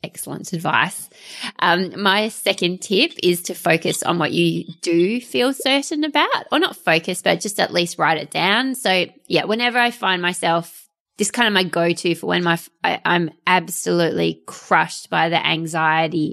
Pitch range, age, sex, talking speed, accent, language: 170-210 Hz, 20-39, female, 175 wpm, Australian, English